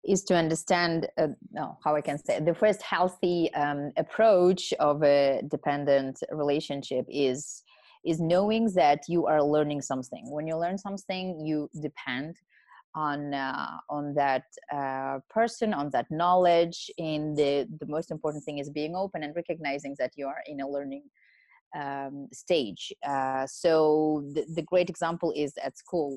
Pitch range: 140-170 Hz